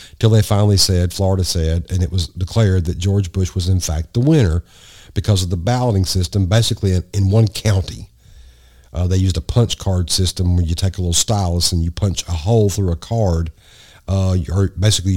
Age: 50-69